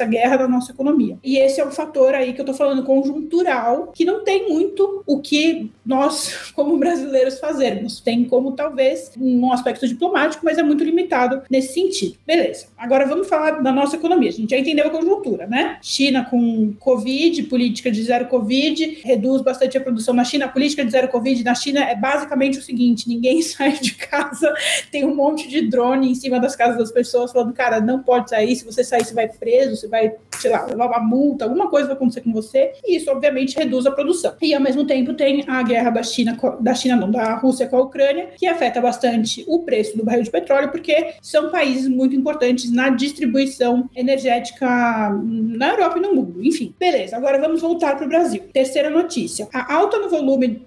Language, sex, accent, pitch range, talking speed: Portuguese, female, Brazilian, 245-295 Hz, 205 wpm